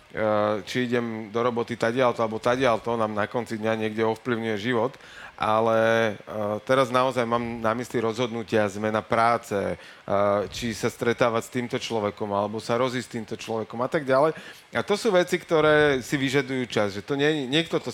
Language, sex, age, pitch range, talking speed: Slovak, male, 30-49, 110-130 Hz, 170 wpm